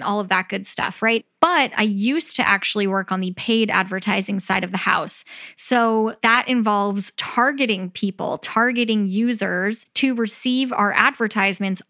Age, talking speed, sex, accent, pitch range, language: 10-29, 155 wpm, female, American, 200-230 Hz, English